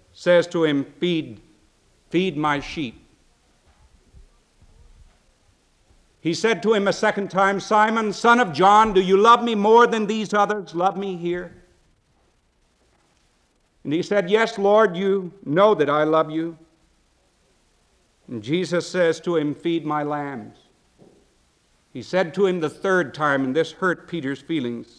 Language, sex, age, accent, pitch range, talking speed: English, male, 60-79, American, 135-200 Hz, 145 wpm